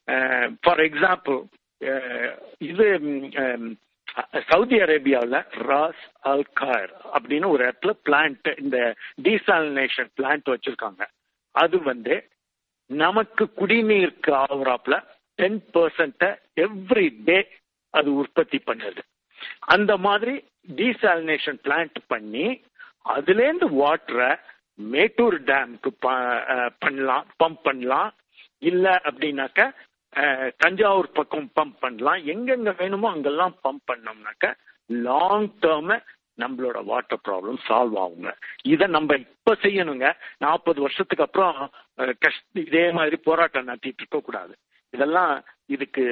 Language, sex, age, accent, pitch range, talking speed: Tamil, male, 60-79, native, 140-210 Hz, 95 wpm